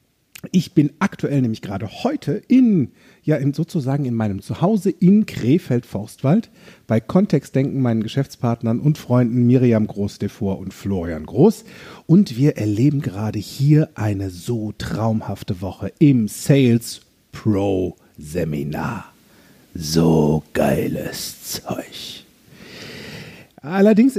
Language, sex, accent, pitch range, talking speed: German, male, German, 115-170 Hz, 100 wpm